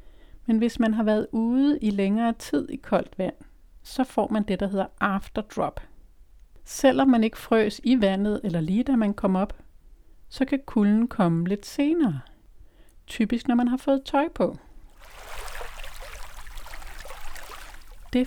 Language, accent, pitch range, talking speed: Danish, native, 195-245 Hz, 150 wpm